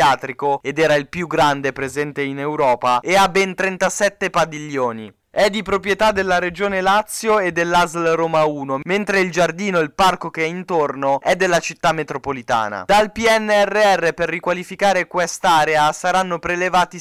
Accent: native